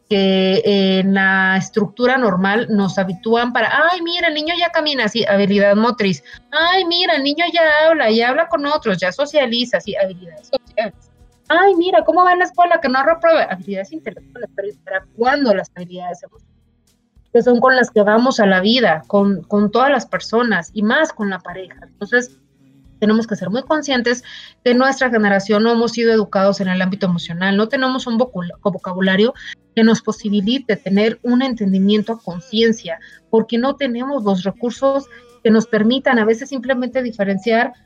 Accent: Mexican